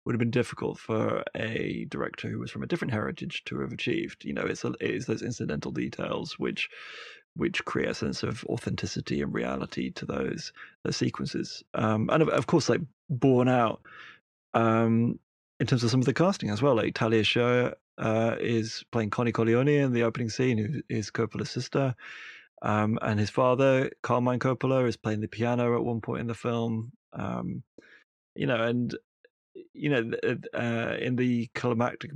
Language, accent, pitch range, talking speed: English, British, 115-130 Hz, 180 wpm